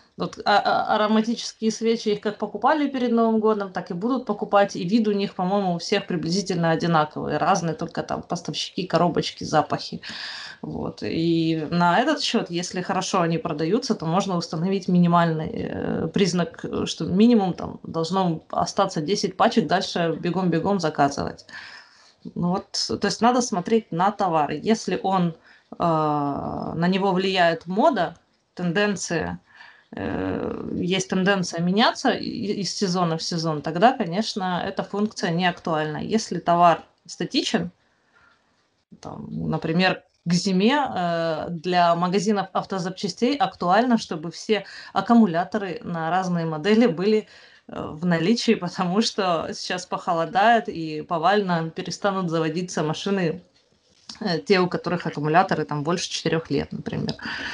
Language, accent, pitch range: Ukrainian, native, 170-210 Hz